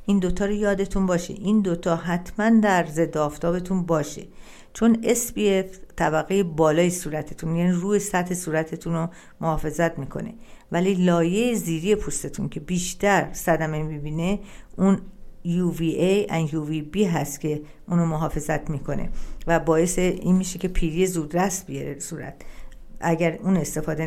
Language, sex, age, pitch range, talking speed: Persian, female, 50-69, 160-195 Hz, 135 wpm